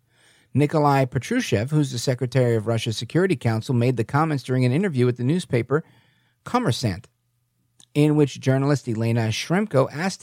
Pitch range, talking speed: 120-160 Hz, 145 wpm